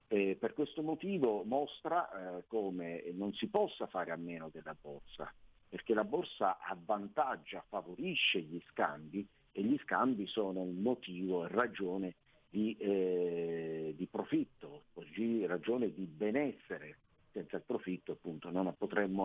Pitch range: 90-120 Hz